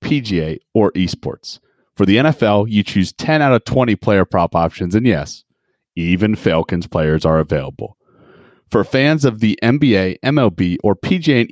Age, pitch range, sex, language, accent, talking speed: 30-49, 95-130 Hz, male, English, American, 160 wpm